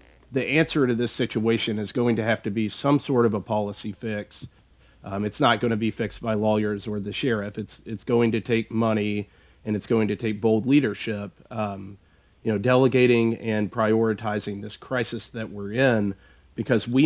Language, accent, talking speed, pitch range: English, American, 195 wpm, 105-120 Hz